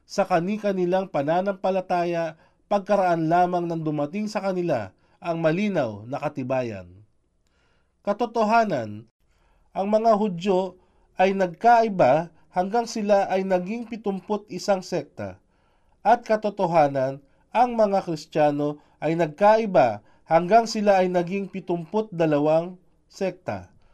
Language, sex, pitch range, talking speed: Filipino, male, 145-205 Hz, 100 wpm